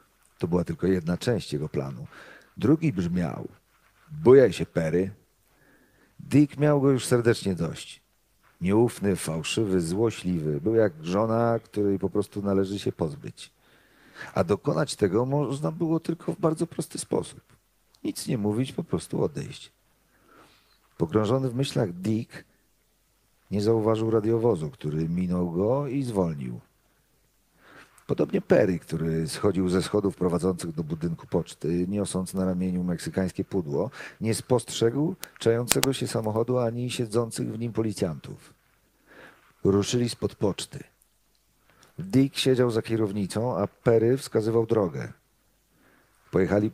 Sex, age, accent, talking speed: male, 50-69, native, 120 wpm